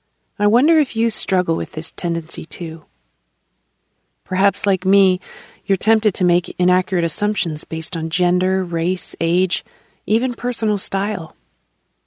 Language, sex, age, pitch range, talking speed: English, female, 40-59, 165-200 Hz, 130 wpm